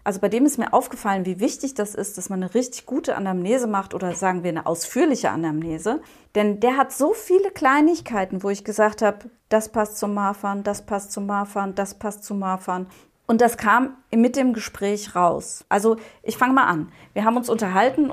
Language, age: German, 30-49